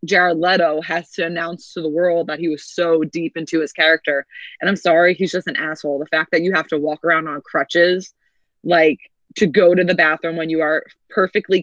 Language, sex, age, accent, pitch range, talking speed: English, female, 20-39, American, 155-180 Hz, 220 wpm